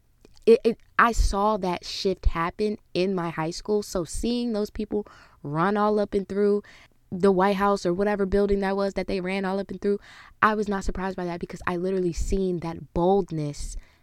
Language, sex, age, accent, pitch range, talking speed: English, female, 20-39, American, 160-200 Hz, 200 wpm